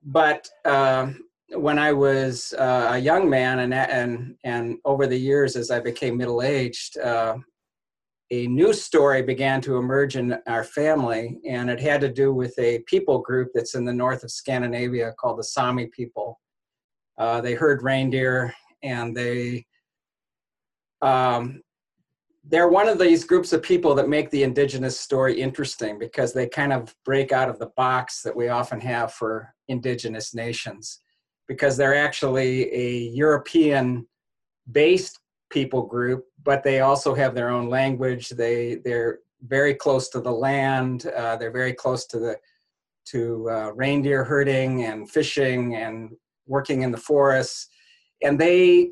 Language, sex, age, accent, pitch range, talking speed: English, male, 40-59, American, 120-140 Hz, 155 wpm